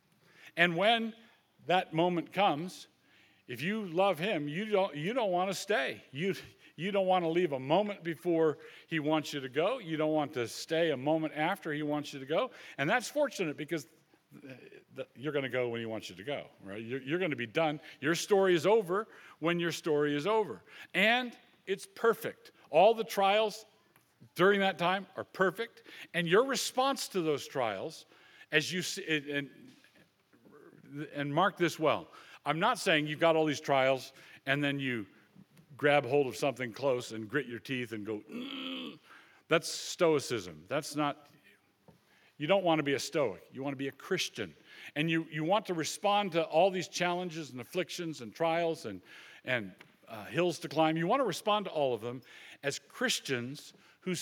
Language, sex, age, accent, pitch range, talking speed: English, male, 50-69, American, 140-190 Hz, 190 wpm